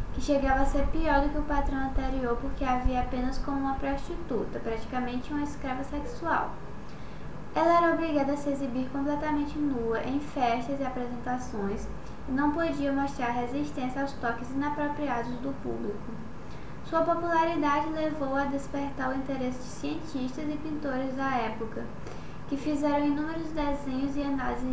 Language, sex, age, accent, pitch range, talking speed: Portuguese, female, 10-29, Brazilian, 250-290 Hz, 150 wpm